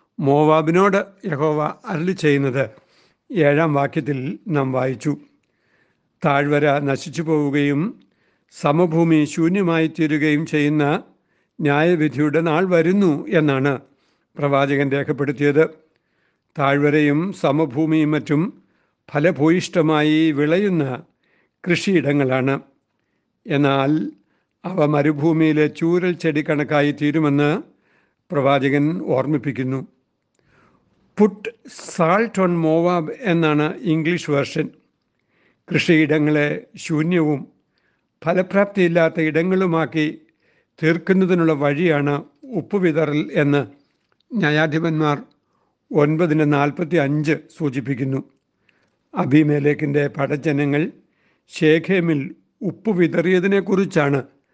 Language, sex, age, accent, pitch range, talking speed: Malayalam, male, 60-79, native, 145-175 Hz, 65 wpm